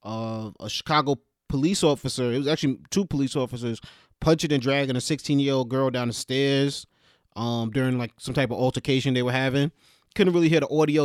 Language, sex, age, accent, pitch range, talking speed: English, male, 30-49, American, 125-150 Hz, 200 wpm